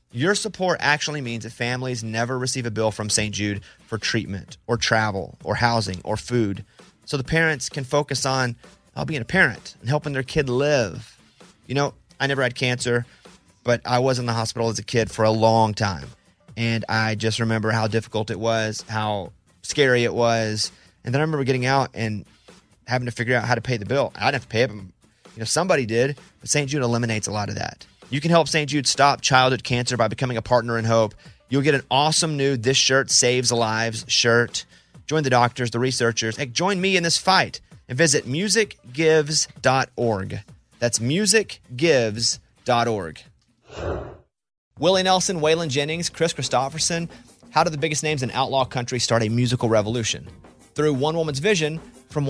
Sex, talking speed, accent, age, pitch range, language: male, 185 wpm, American, 30-49, 115-145 Hz, English